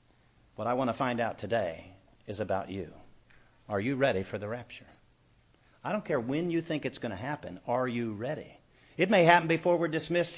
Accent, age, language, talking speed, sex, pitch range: American, 50-69, English, 200 wpm, male, 115-180 Hz